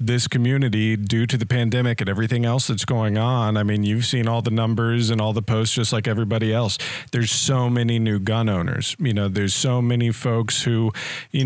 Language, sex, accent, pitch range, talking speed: English, male, American, 115-130 Hz, 215 wpm